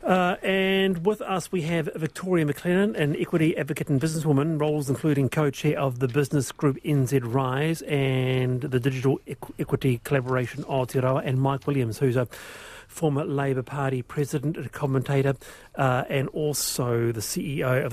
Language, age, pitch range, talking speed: English, 40-59, 135-175 Hz, 150 wpm